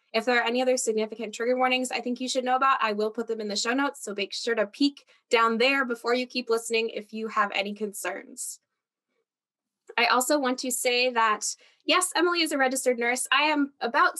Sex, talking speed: female, 220 wpm